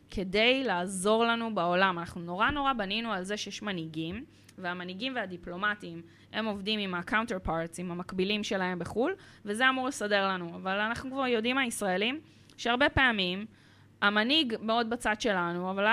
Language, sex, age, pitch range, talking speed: Hebrew, female, 20-39, 175-225 Hz, 145 wpm